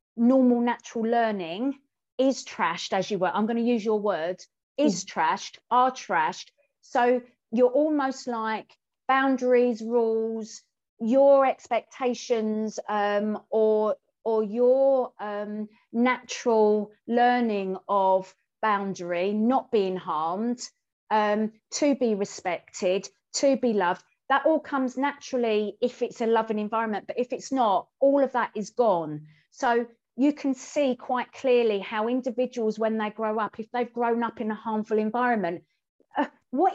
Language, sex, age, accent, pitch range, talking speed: English, female, 40-59, British, 210-265 Hz, 140 wpm